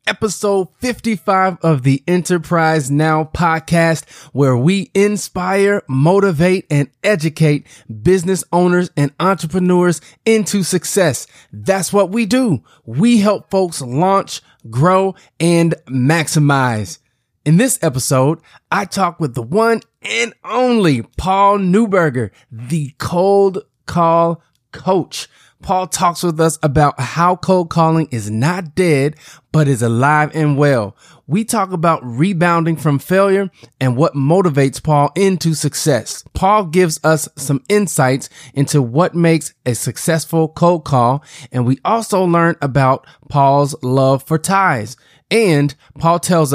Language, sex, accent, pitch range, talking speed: English, male, American, 130-185 Hz, 125 wpm